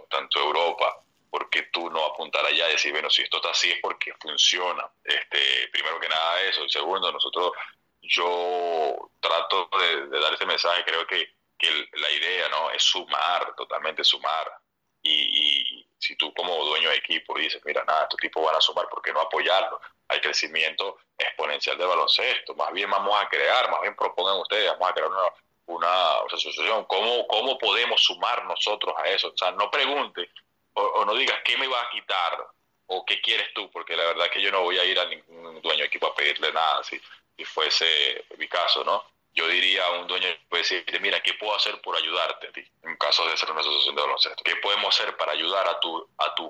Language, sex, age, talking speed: Spanish, male, 30-49, 205 wpm